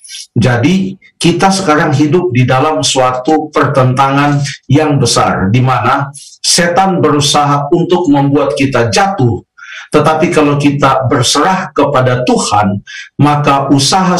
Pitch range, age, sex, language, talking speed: 130-160 Hz, 50-69, male, Indonesian, 105 wpm